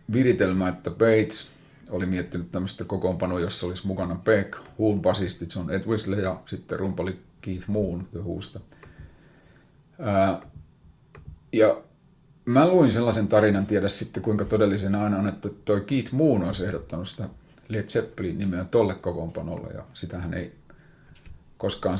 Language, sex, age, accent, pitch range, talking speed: Finnish, male, 30-49, native, 90-110 Hz, 130 wpm